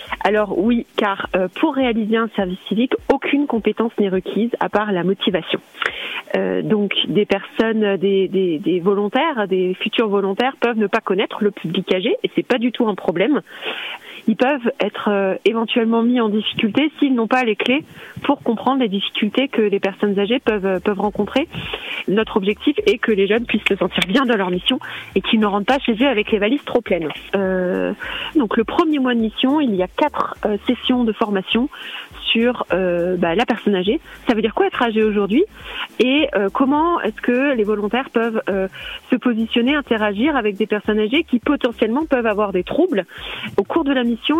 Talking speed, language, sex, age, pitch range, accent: 200 wpm, French, female, 30-49, 205-265 Hz, French